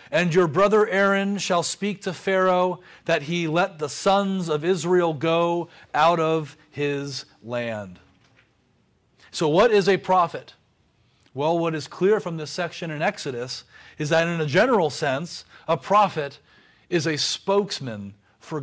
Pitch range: 140-185 Hz